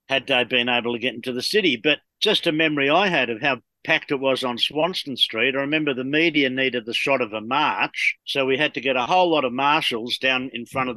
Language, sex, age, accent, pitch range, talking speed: English, male, 50-69, Australian, 125-155 Hz, 255 wpm